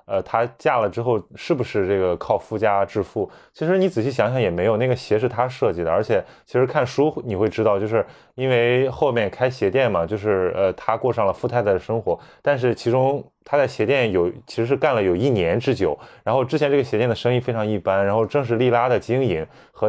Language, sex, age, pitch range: Chinese, male, 20-39, 100-130 Hz